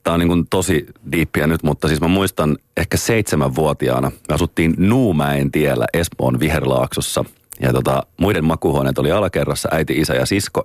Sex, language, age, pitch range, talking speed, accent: male, Finnish, 30-49, 70-80 Hz, 160 wpm, native